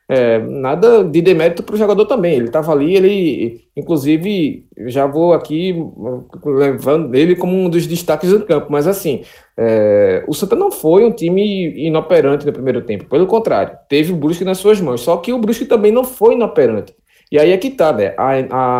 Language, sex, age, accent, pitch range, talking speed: Portuguese, male, 20-39, Brazilian, 130-200 Hz, 195 wpm